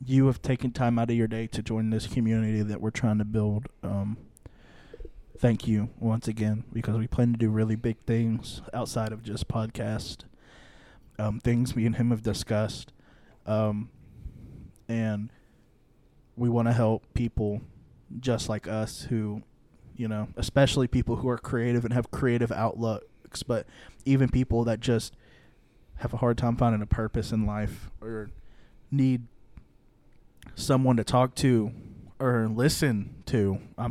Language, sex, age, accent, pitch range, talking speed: English, male, 20-39, American, 110-125 Hz, 155 wpm